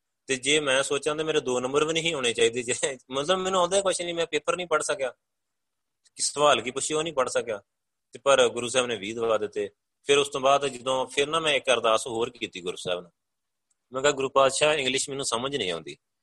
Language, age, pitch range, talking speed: Punjabi, 30-49, 115-155 Hz, 235 wpm